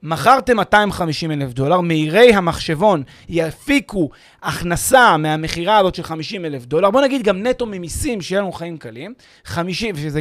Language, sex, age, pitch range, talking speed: Hebrew, male, 30-49, 165-240 Hz, 140 wpm